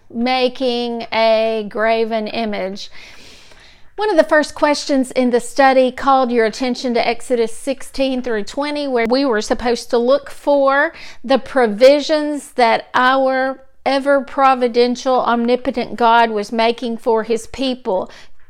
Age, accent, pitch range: 40-59, American, 235-290 Hz